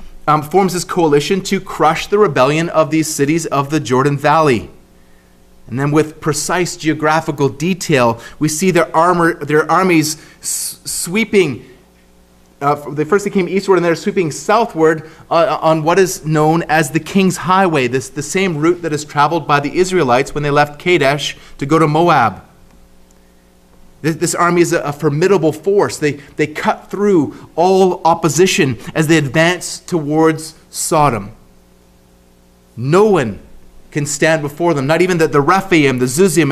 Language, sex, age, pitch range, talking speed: English, male, 30-49, 145-175 Hz, 160 wpm